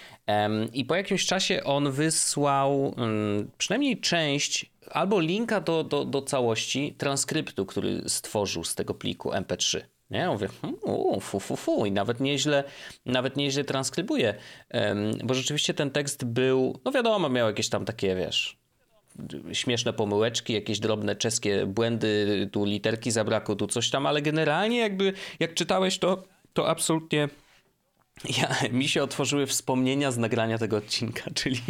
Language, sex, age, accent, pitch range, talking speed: Polish, male, 30-49, native, 110-155 Hz, 130 wpm